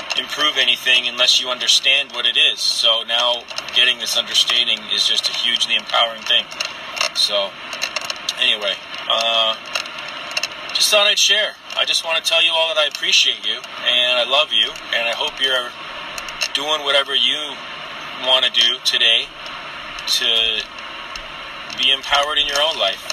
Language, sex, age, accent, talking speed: English, male, 30-49, American, 155 wpm